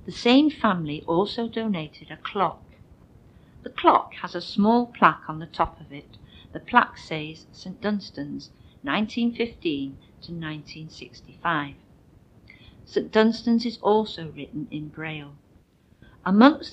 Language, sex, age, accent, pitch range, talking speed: English, female, 50-69, British, 150-205 Hz, 120 wpm